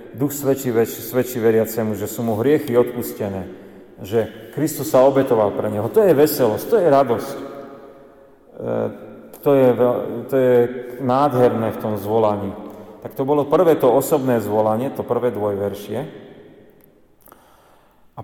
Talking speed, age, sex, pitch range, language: 135 wpm, 40-59, male, 115-130 Hz, Slovak